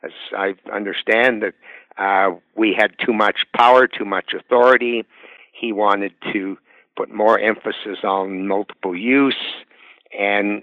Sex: male